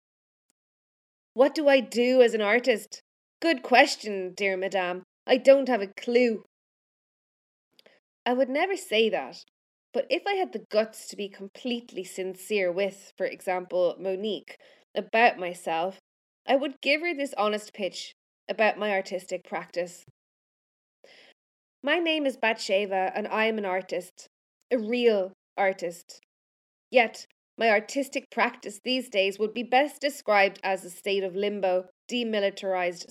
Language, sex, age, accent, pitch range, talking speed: English, female, 20-39, Irish, 195-250 Hz, 140 wpm